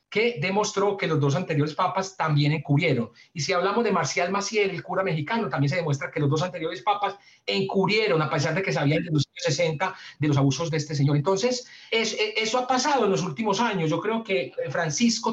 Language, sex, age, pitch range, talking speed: Spanish, male, 40-59, 155-210 Hz, 220 wpm